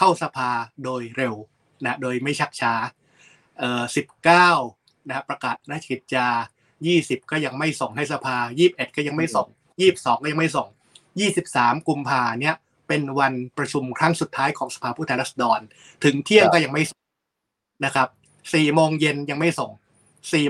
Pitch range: 125-150 Hz